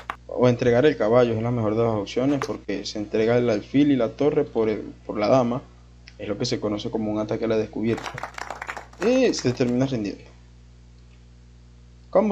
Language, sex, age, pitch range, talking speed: English, male, 20-39, 100-135 Hz, 190 wpm